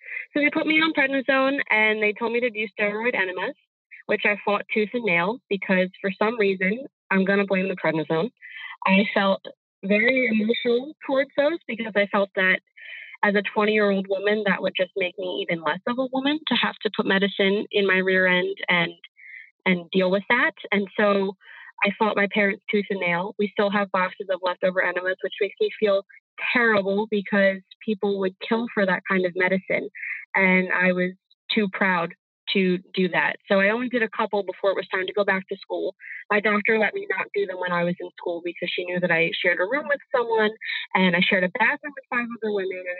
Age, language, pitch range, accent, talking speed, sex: 20-39, English, 190-225 Hz, American, 215 wpm, female